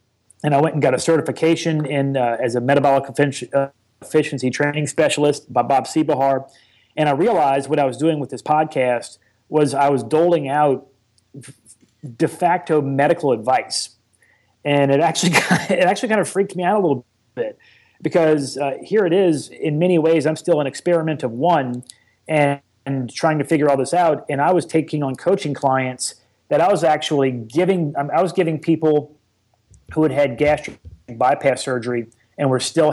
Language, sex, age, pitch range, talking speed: English, male, 30-49, 130-165 Hz, 180 wpm